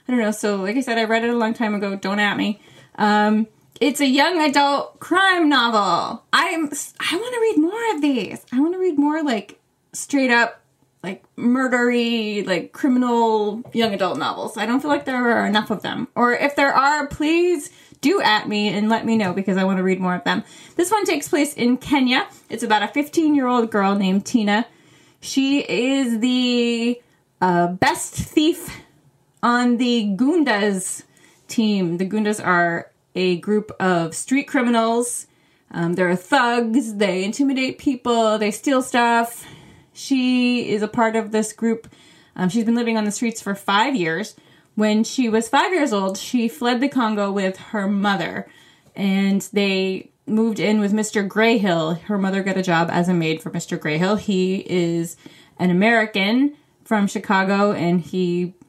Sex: female